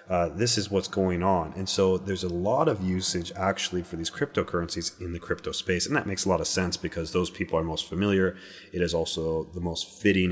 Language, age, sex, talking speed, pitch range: English, 30-49, male, 235 wpm, 85-100 Hz